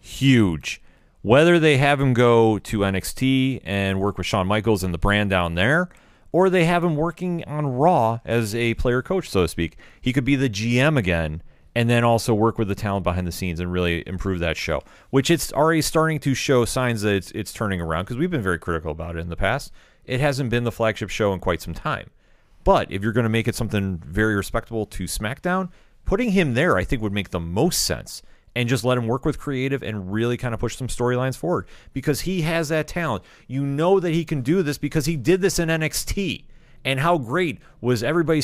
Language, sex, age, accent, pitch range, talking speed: English, male, 30-49, American, 105-145 Hz, 225 wpm